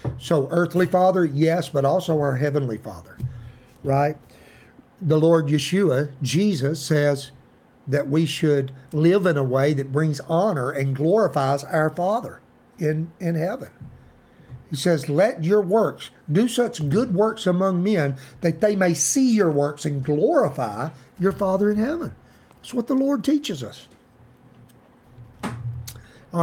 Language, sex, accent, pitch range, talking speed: English, male, American, 135-180 Hz, 140 wpm